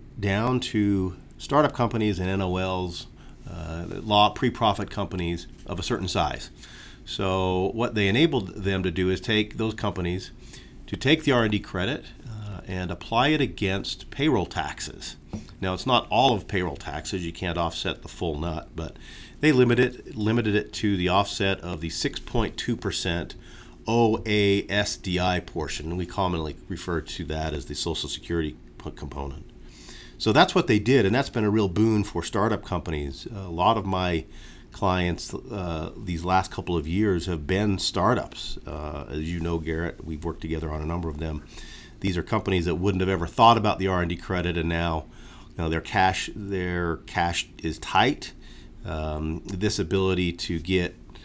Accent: American